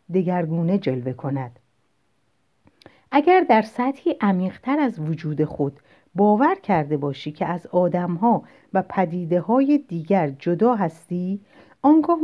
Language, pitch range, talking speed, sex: Persian, 165-240 Hz, 115 wpm, female